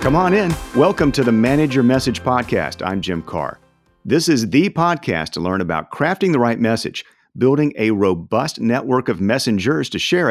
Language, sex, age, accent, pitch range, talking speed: English, male, 50-69, American, 100-140 Hz, 185 wpm